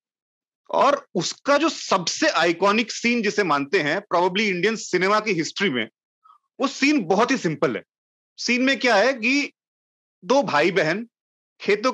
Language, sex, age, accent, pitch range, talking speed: Hindi, male, 30-49, native, 190-275 Hz, 150 wpm